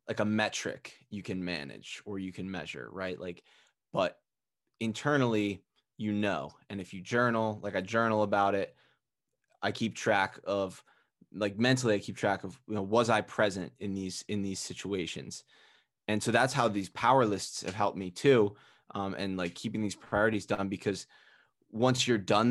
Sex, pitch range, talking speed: male, 95-110 Hz, 180 wpm